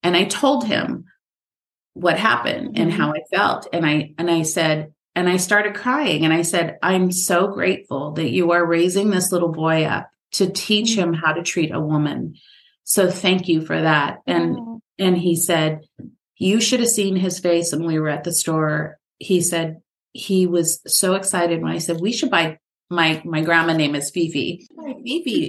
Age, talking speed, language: 30-49, 190 wpm, English